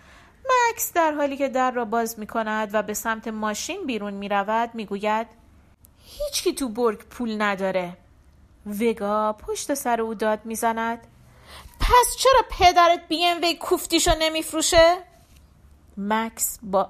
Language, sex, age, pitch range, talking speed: Persian, female, 40-59, 200-330 Hz, 145 wpm